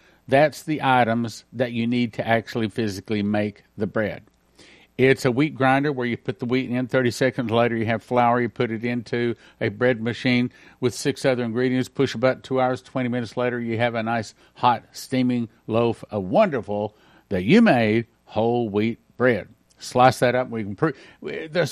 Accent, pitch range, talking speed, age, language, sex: American, 110-135 Hz, 190 wpm, 50-69, English, male